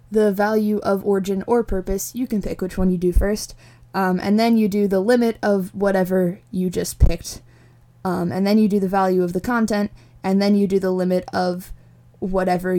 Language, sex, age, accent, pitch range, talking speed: English, female, 20-39, American, 180-215 Hz, 205 wpm